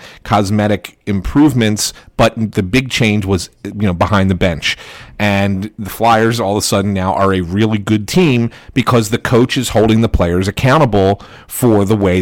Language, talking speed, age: English, 175 wpm, 40-59